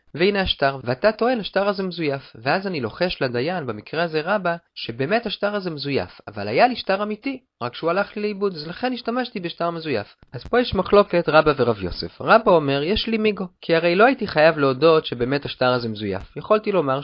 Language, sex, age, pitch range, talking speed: Hebrew, male, 30-49, 135-210 Hz, 200 wpm